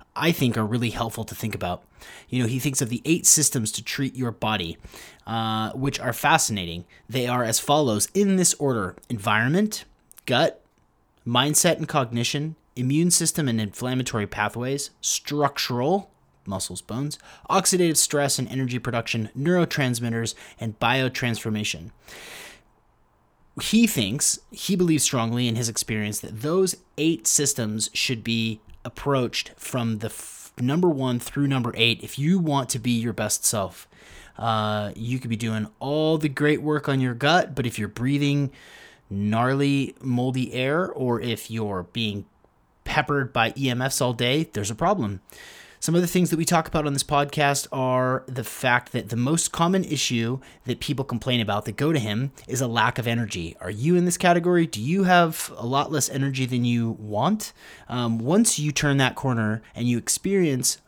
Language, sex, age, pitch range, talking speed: English, male, 30-49, 115-145 Hz, 170 wpm